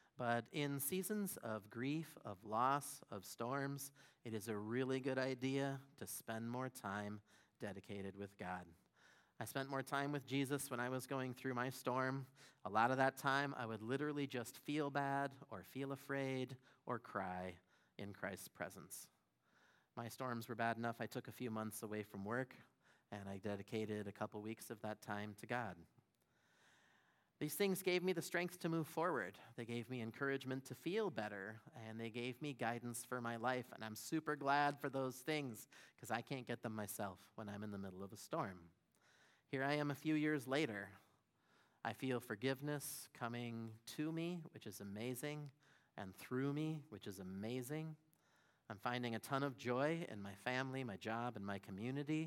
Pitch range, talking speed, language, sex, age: 110-140 Hz, 185 wpm, English, male, 30-49